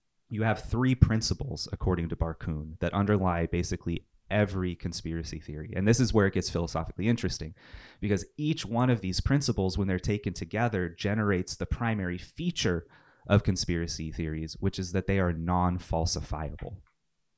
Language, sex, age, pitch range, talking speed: English, male, 30-49, 85-110 Hz, 150 wpm